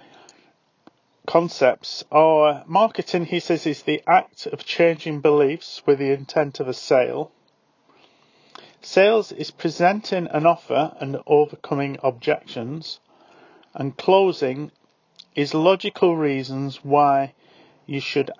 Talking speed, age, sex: 110 wpm, 40-59, male